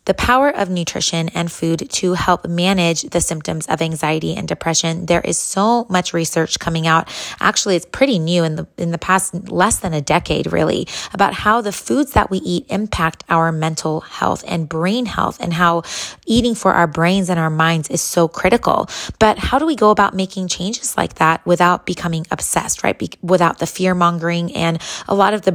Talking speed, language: 200 wpm, English